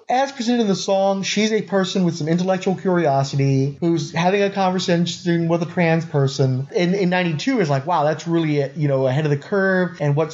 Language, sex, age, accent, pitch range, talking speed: English, male, 30-49, American, 145-185 Hz, 210 wpm